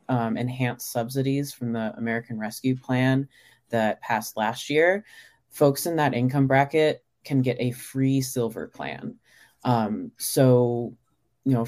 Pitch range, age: 115-135 Hz, 30-49